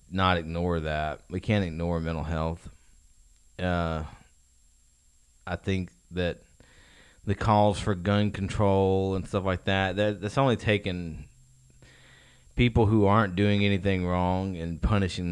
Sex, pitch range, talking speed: male, 85-100 Hz, 130 wpm